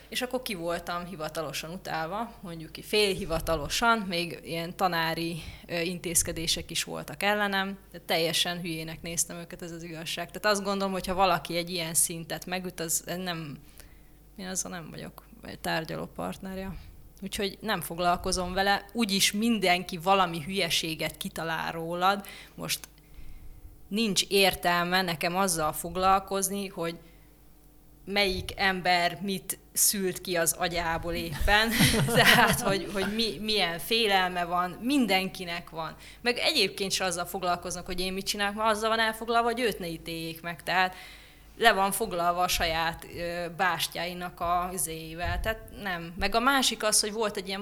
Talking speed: 145 wpm